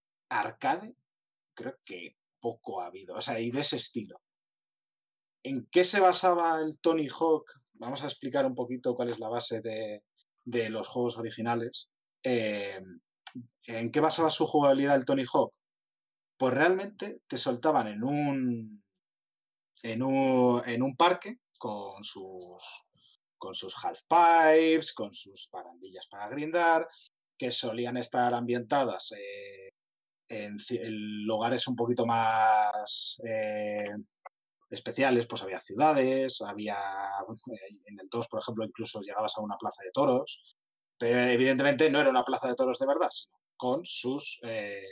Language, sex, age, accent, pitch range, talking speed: Spanish, male, 30-49, Spanish, 110-160 Hz, 140 wpm